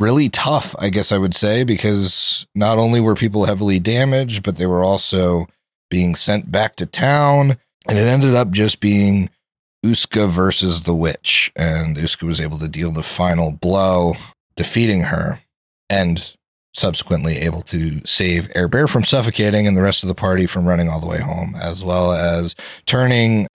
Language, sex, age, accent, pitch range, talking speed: English, male, 30-49, American, 90-105 Hz, 175 wpm